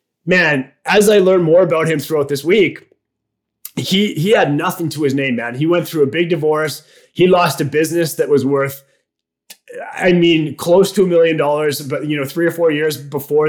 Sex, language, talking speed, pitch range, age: male, English, 205 wpm, 145-175 Hz, 20-39